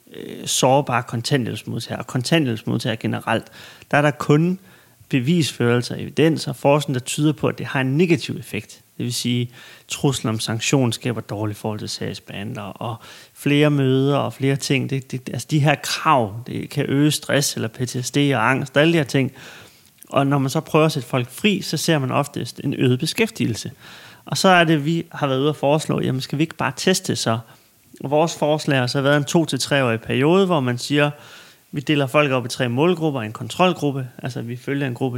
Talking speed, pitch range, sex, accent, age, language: 210 wpm, 120-150 Hz, male, native, 30-49, Danish